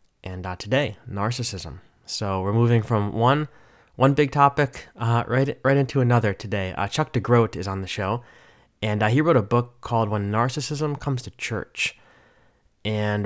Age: 20-39